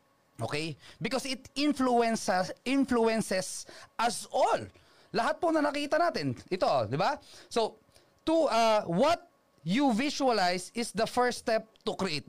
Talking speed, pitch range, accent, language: 135 wpm, 165-265 Hz, native, Filipino